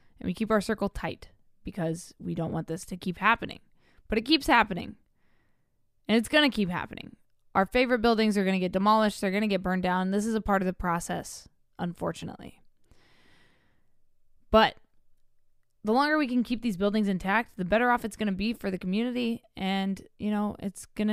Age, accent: 20-39, American